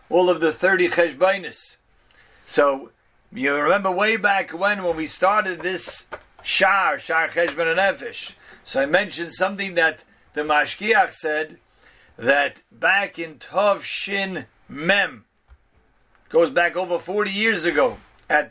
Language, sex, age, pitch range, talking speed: English, male, 50-69, 165-210 Hz, 135 wpm